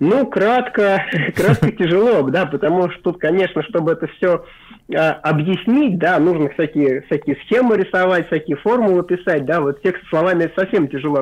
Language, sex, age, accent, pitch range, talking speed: Russian, male, 30-49, native, 140-180 Hz, 150 wpm